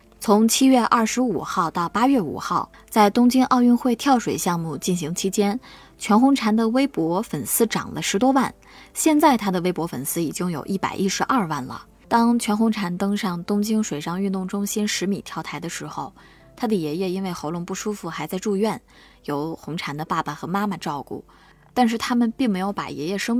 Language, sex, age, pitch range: Chinese, female, 20-39, 160-225 Hz